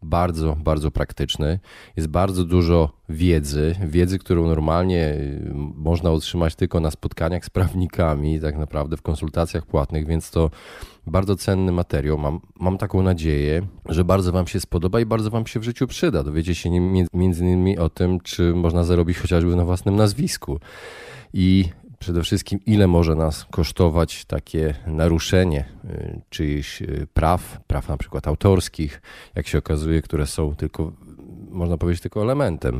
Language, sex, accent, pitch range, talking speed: Polish, male, native, 75-90 Hz, 150 wpm